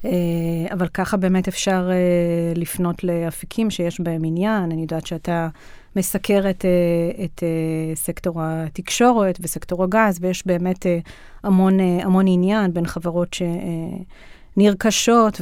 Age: 30-49